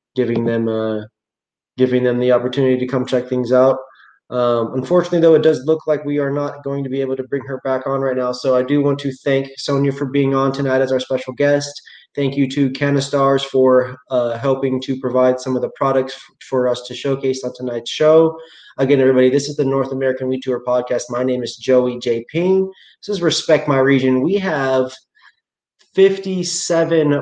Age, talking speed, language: 20-39, 205 wpm, English